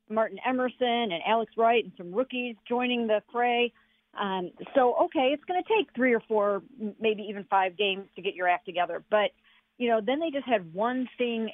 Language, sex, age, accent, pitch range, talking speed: English, female, 50-69, American, 195-240 Hz, 205 wpm